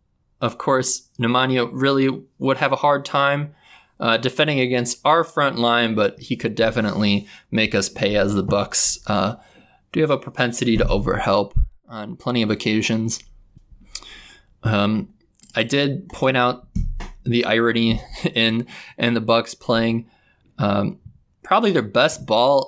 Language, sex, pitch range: English, male, 115-135 Hz